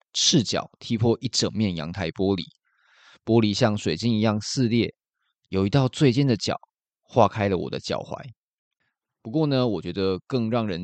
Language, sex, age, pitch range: Chinese, male, 20-39, 95-115 Hz